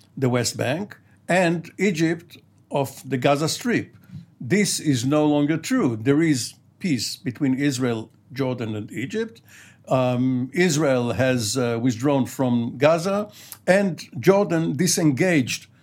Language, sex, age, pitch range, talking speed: English, male, 60-79, 130-165 Hz, 120 wpm